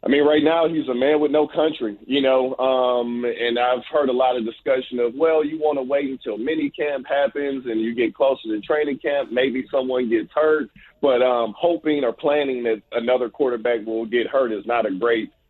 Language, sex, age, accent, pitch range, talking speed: English, male, 40-59, American, 120-155 Hz, 215 wpm